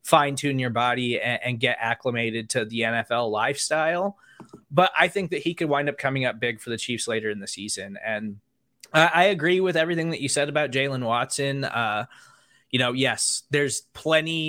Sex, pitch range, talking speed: male, 120-155 Hz, 200 wpm